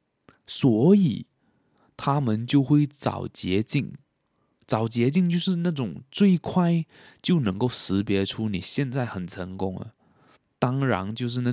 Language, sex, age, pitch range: Chinese, male, 20-39, 95-130 Hz